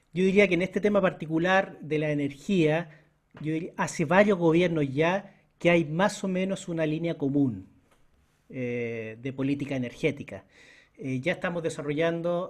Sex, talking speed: male, 155 wpm